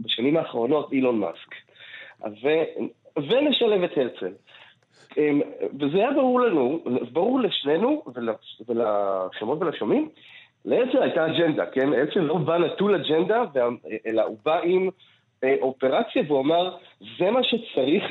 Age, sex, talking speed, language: 30-49, male, 115 wpm, Hebrew